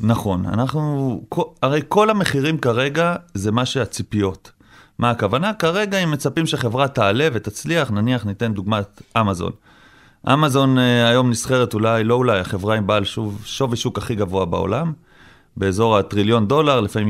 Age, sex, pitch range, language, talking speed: 30-49, male, 105-145 Hz, Hebrew, 135 wpm